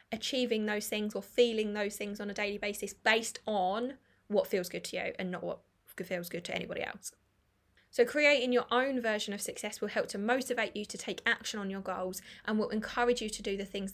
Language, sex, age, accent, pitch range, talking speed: English, female, 20-39, British, 200-245 Hz, 225 wpm